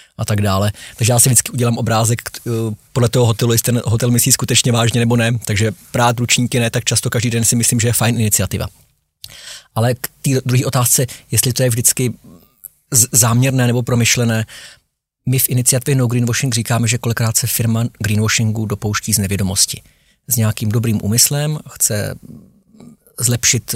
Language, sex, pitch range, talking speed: Czech, male, 105-120 Hz, 165 wpm